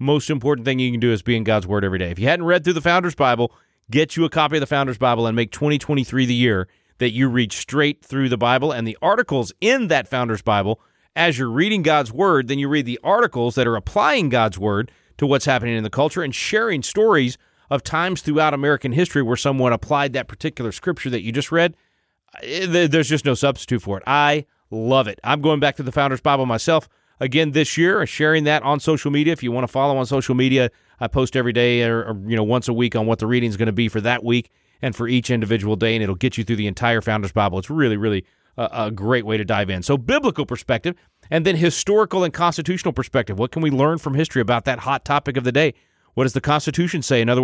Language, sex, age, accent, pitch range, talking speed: English, male, 30-49, American, 120-150 Hz, 245 wpm